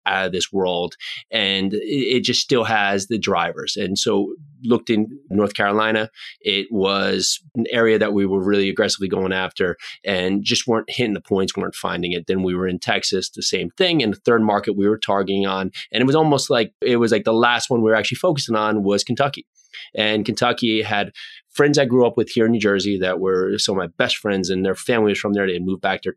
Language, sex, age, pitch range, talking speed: English, male, 20-39, 95-115 Hz, 230 wpm